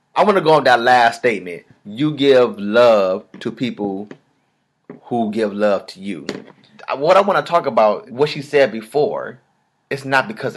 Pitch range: 115-160 Hz